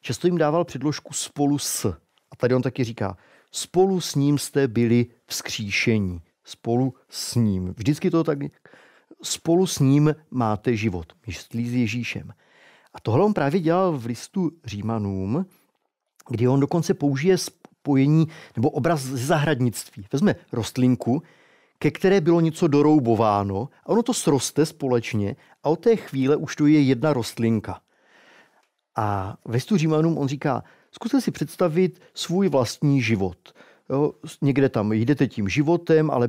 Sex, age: male, 40-59